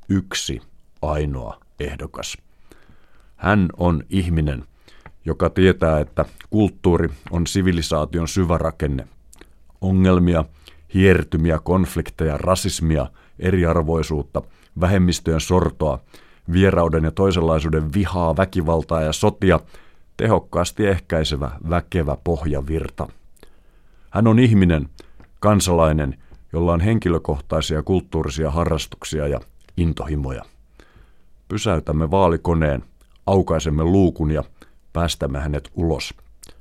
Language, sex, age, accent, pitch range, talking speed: Finnish, male, 50-69, native, 75-90 Hz, 85 wpm